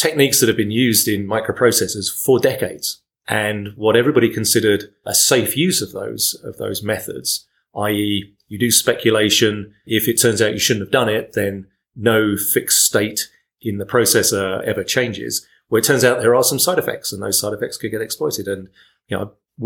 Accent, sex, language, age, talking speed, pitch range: British, male, English, 30-49, 195 wpm, 100-115 Hz